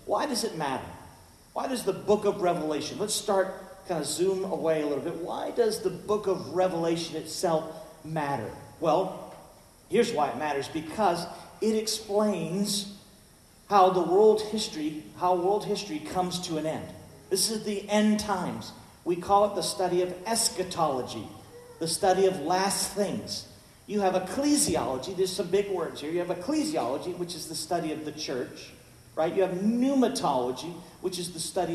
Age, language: 50-69, English